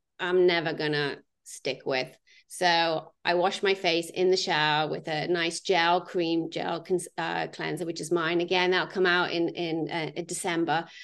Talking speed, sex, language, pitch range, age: 180 wpm, female, English, 180-220 Hz, 30-49